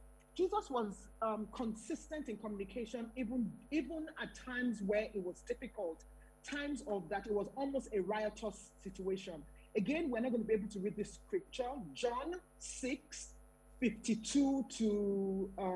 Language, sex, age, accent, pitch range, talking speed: English, male, 40-59, Nigerian, 190-250 Hz, 135 wpm